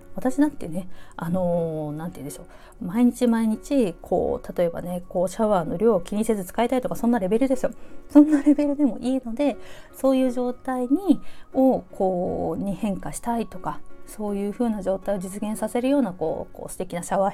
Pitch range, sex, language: 195-275 Hz, female, Japanese